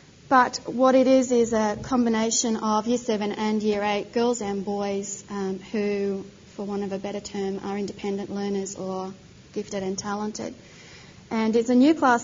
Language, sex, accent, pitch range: English, female, Australian, 205-240 Hz